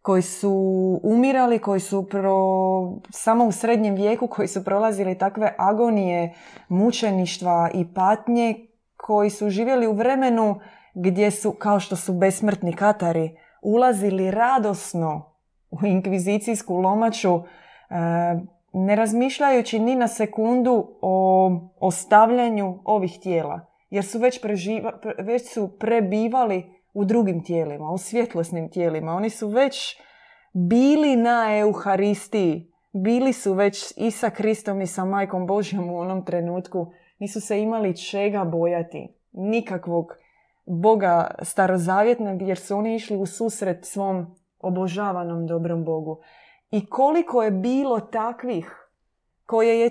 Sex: female